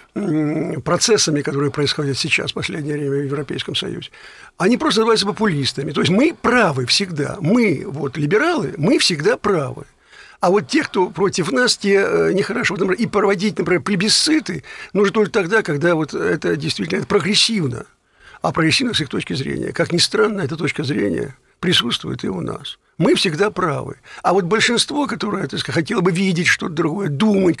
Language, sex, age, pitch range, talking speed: Russian, male, 60-79, 145-205 Hz, 165 wpm